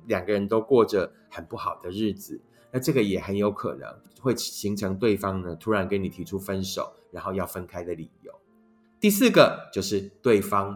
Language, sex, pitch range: Chinese, male, 100-135 Hz